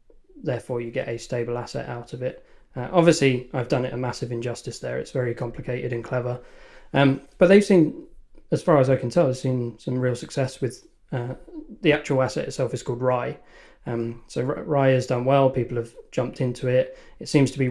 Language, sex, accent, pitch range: English, male, British, 120-135 Hz